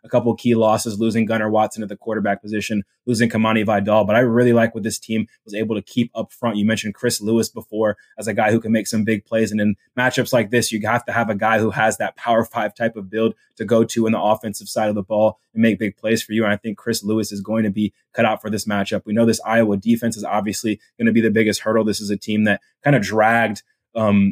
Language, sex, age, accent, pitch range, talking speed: English, male, 20-39, American, 105-115 Hz, 280 wpm